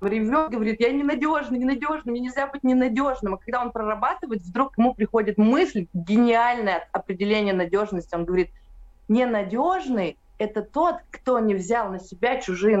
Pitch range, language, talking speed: 205-250 Hz, Russian, 155 wpm